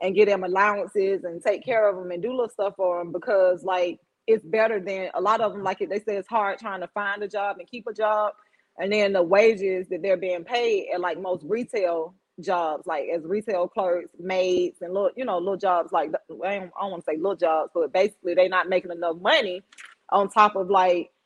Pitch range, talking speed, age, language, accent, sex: 180-220 Hz, 230 wpm, 20-39, English, American, female